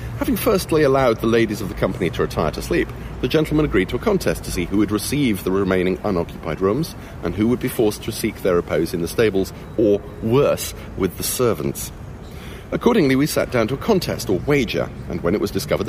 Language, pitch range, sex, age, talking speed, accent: English, 105-140 Hz, male, 40-59, 220 wpm, British